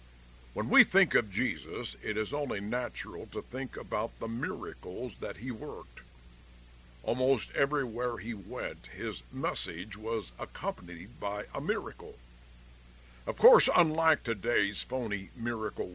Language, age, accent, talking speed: English, 60-79, American, 130 wpm